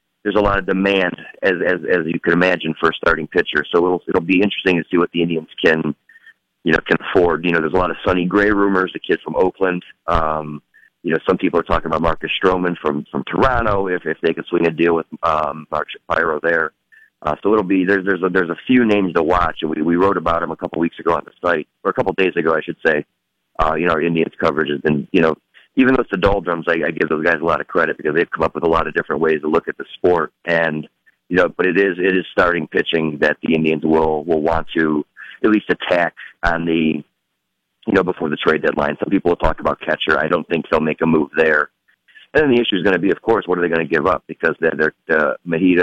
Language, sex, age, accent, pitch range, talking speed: English, male, 30-49, American, 80-95 Hz, 265 wpm